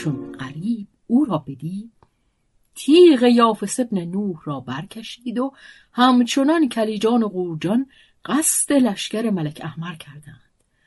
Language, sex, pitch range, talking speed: Persian, female, 160-235 Hz, 115 wpm